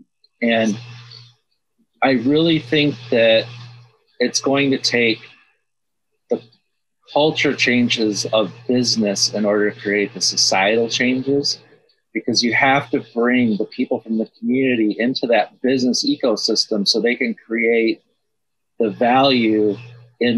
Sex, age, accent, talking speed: male, 40-59, American, 125 wpm